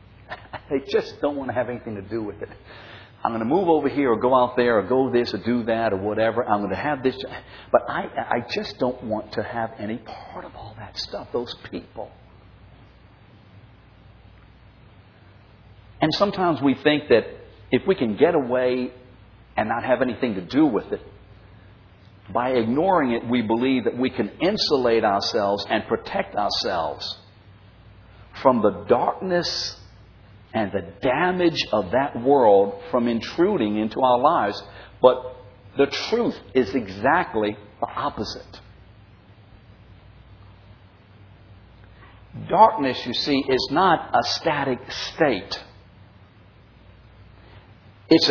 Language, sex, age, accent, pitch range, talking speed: English, male, 60-79, American, 100-130 Hz, 140 wpm